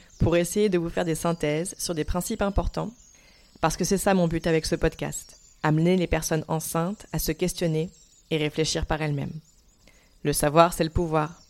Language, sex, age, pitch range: French, female, 20-39, 155-190 Hz